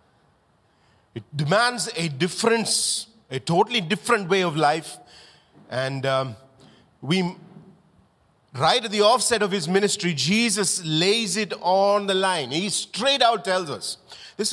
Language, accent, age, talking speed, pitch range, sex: English, Indian, 40-59, 130 wpm, 145-230 Hz, male